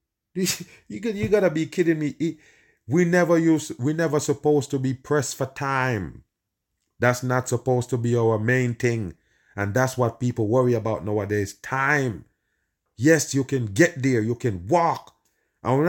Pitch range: 120-155 Hz